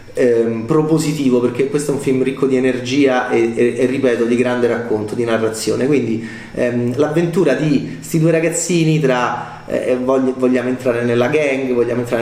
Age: 30-49